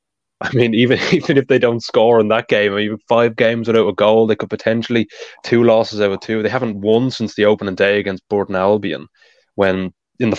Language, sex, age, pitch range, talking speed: English, male, 20-39, 100-115 Hz, 230 wpm